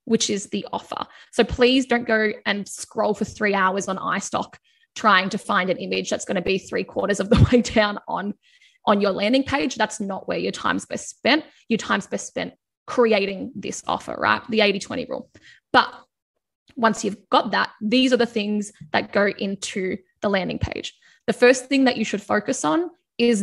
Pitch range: 205-245 Hz